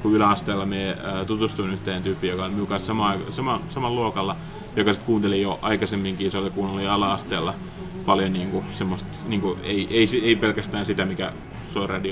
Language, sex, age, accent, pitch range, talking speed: Finnish, male, 30-49, native, 95-115 Hz, 160 wpm